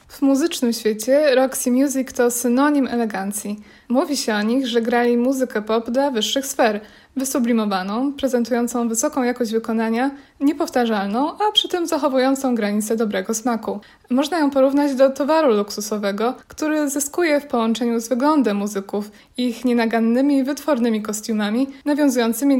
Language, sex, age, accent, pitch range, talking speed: Polish, female, 20-39, native, 225-280 Hz, 135 wpm